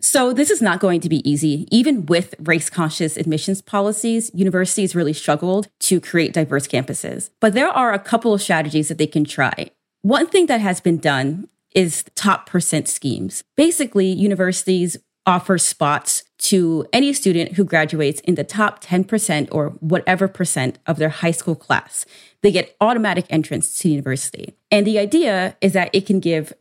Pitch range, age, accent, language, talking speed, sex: 165-215 Hz, 30-49, American, English, 175 wpm, female